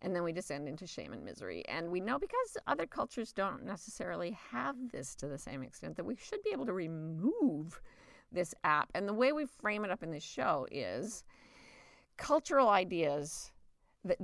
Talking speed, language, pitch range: 190 wpm, English, 160-235 Hz